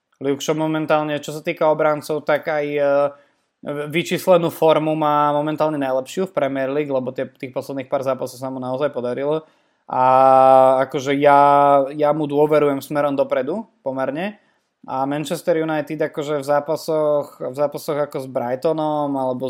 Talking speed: 140 wpm